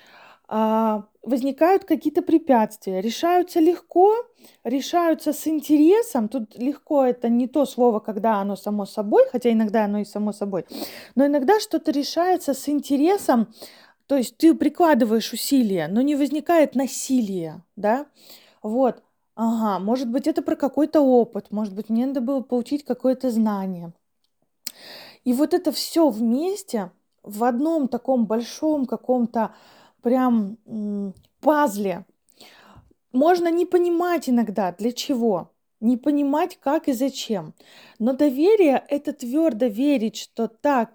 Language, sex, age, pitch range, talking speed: Russian, female, 20-39, 220-295 Hz, 125 wpm